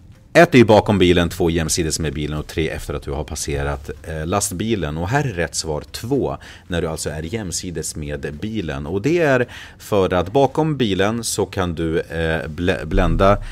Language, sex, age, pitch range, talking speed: Swedish, male, 30-49, 80-105 Hz, 180 wpm